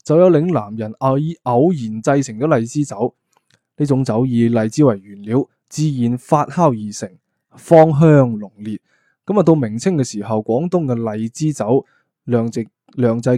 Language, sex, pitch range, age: Chinese, male, 115-150 Hz, 20-39